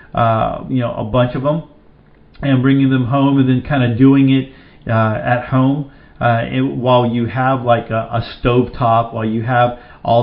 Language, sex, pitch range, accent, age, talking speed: English, male, 115-130 Hz, American, 40-59, 195 wpm